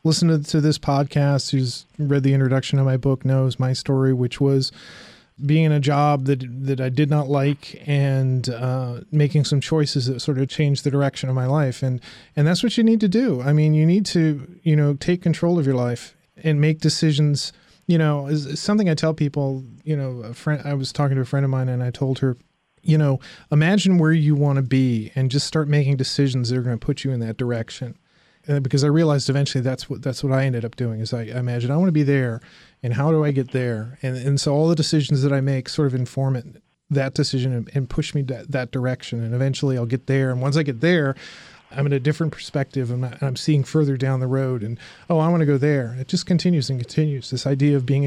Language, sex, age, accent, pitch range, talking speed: English, male, 30-49, American, 130-150 Hz, 245 wpm